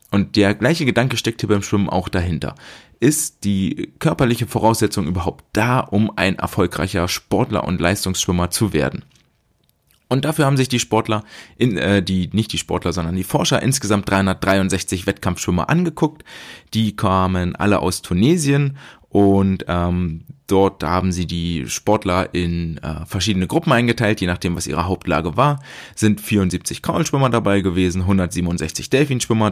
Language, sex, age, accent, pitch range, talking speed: German, male, 20-39, German, 90-115 Hz, 150 wpm